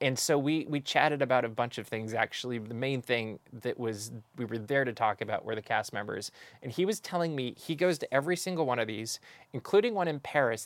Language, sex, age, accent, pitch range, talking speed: English, male, 20-39, American, 110-135 Hz, 240 wpm